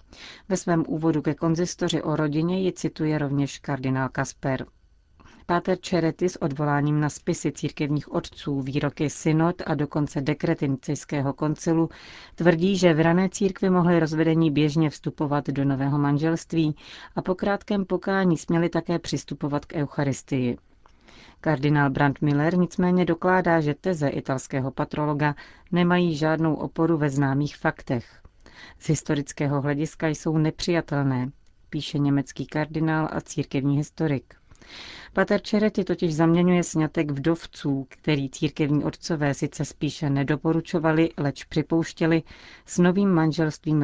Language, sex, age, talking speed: Czech, female, 40-59, 125 wpm